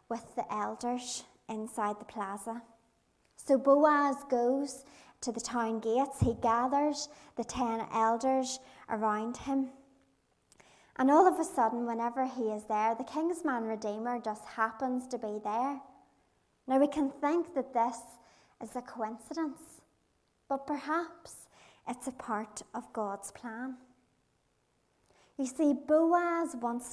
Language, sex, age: English, male, 30-49